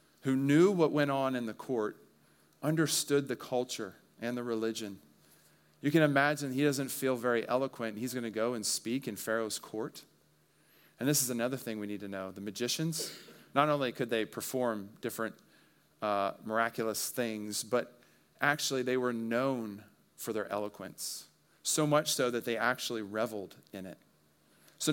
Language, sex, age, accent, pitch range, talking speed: English, male, 40-59, American, 100-125 Hz, 165 wpm